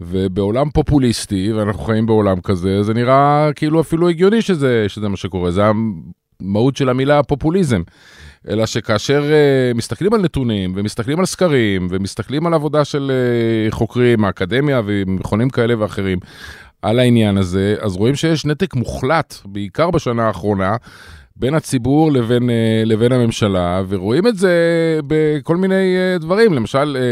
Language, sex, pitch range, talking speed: Hebrew, male, 100-145 Hz, 135 wpm